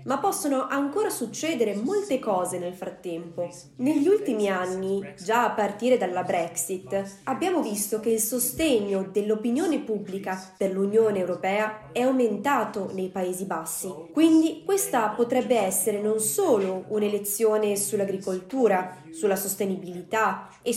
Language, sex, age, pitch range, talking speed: Italian, female, 20-39, 190-255 Hz, 120 wpm